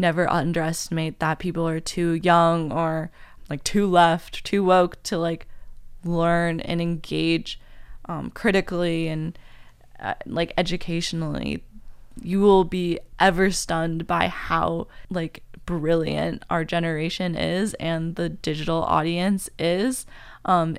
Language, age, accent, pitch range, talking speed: English, 10-29, American, 160-180 Hz, 120 wpm